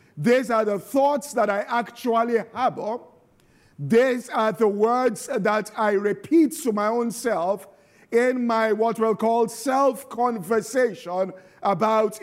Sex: male